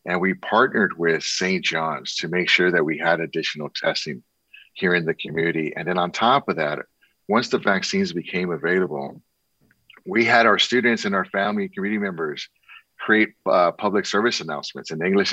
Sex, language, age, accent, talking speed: male, English, 50-69, American, 180 wpm